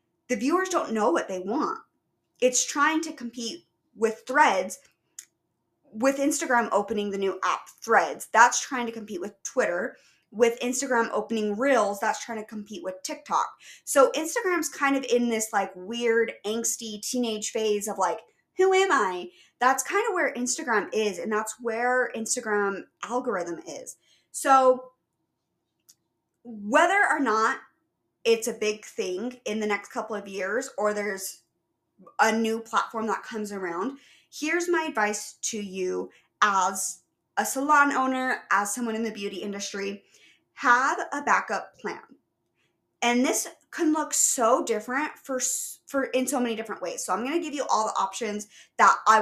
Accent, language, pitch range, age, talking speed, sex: American, English, 205-260 Hz, 20-39, 155 wpm, female